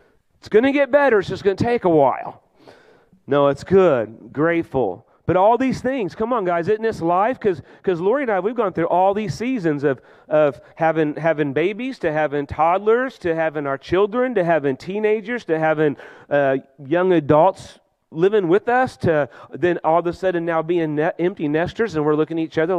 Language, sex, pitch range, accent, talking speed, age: English, male, 160-220 Hz, American, 200 wpm, 40-59